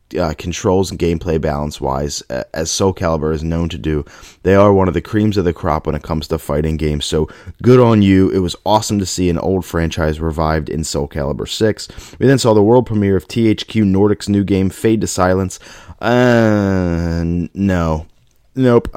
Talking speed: 195 wpm